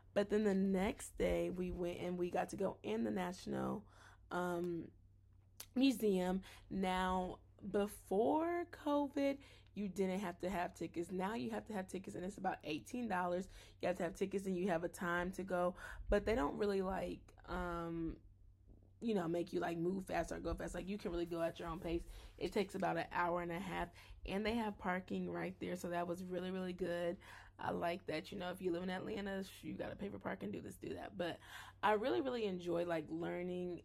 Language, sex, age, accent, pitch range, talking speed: English, female, 20-39, American, 170-190 Hz, 215 wpm